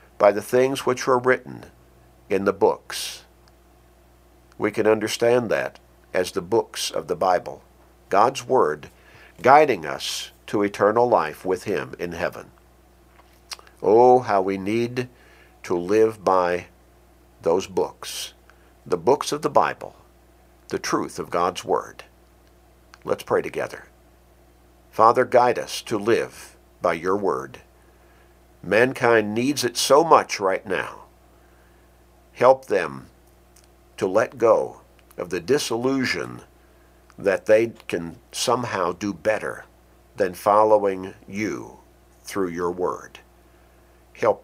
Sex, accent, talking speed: male, American, 120 wpm